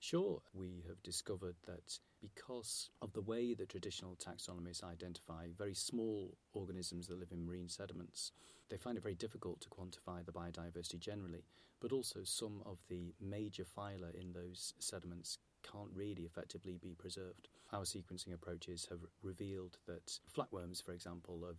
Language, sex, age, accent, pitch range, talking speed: English, male, 30-49, British, 85-100 Hz, 155 wpm